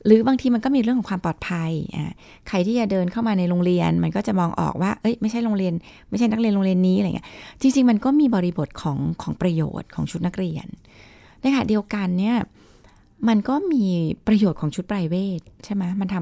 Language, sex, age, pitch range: Thai, female, 20-39, 175-230 Hz